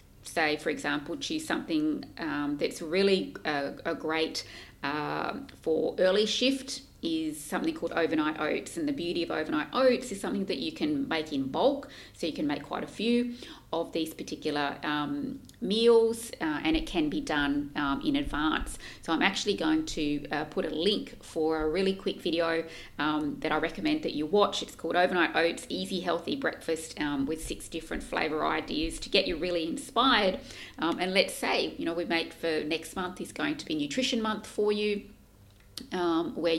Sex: female